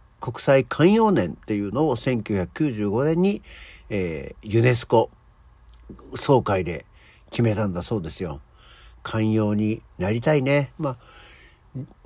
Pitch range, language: 105-155 Hz, Japanese